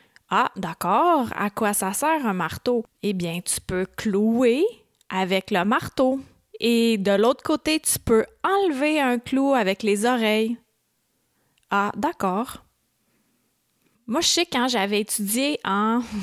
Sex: female